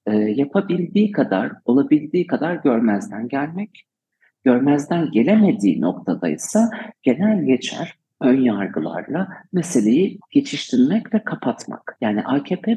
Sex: male